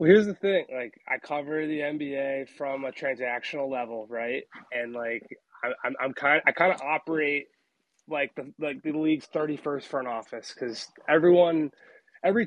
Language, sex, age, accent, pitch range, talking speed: English, male, 20-39, American, 135-160 Hz, 170 wpm